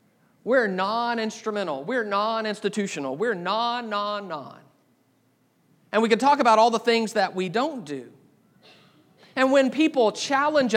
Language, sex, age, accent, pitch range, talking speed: English, male, 40-59, American, 205-255 Hz, 135 wpm